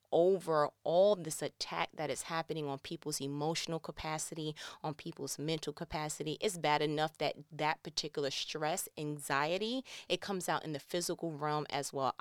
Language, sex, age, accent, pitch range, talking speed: English, female, 30-49, American, 145-220 Hz, 155 wpm